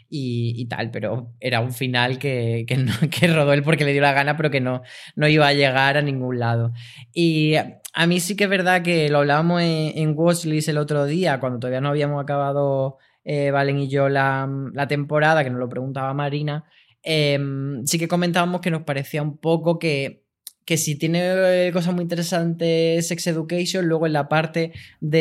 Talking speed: 200 wpm